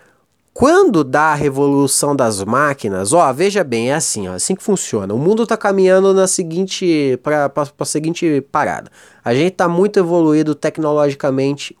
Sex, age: male, 20-39